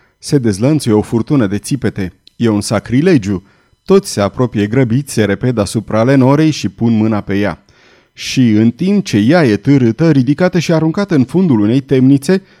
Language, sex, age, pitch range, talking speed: Romanian, male, 30-49, 110-155 Hz, 170 wpm